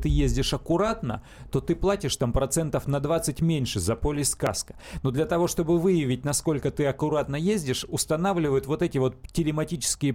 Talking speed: 160 wpm